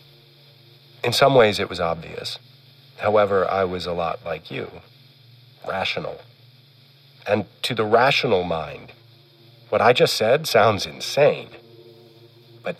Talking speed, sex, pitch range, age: 120 wpm, male, 115-120 Hz, 40-59